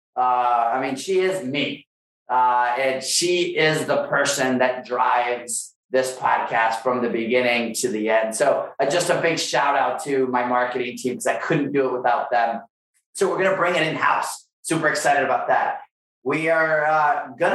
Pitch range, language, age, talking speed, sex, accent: 125-170 Hz, English, 30-49, 185 wpm, male, American